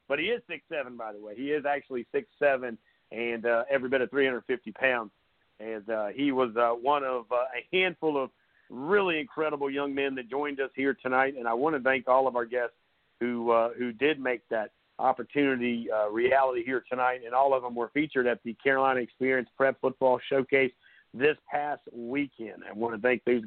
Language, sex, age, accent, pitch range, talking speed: English, male, 50-69, American, 125-145 Hz, 200 wpm